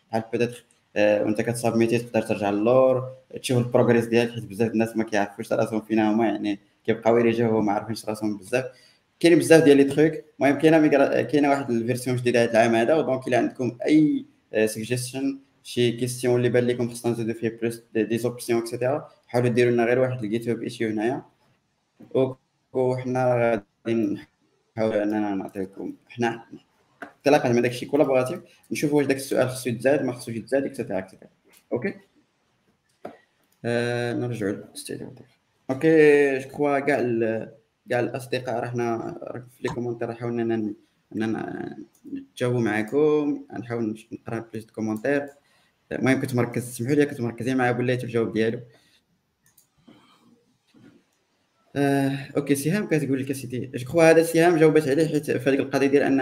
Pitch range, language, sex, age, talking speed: 115-140 Hz, Arabic, male, 20-39, 90 wpm